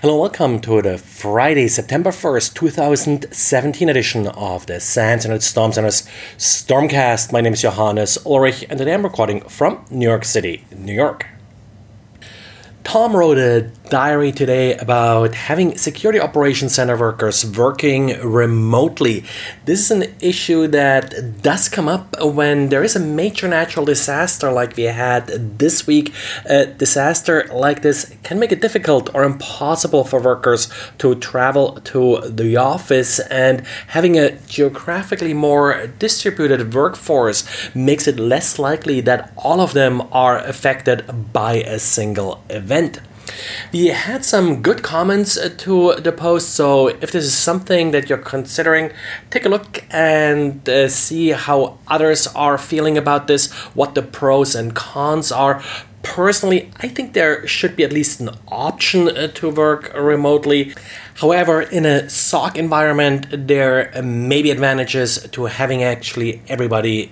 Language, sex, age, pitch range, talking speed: English, male, 30-49, 115-155 Hz, 145 wpm